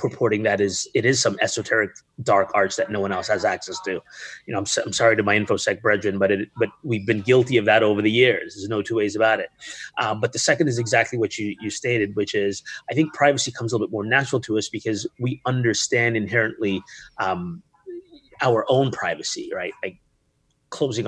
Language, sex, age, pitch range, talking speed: English, male, 30-49, 100-130 Hz, 215 wpm